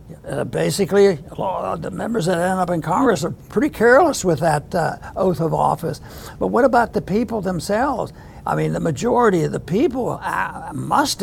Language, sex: English, male